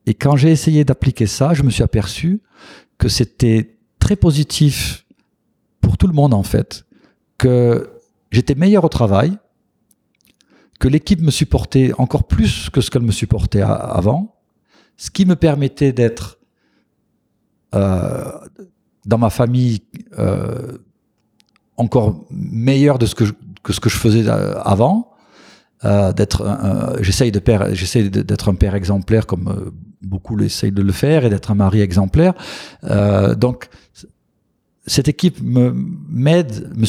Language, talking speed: French, 145 wpm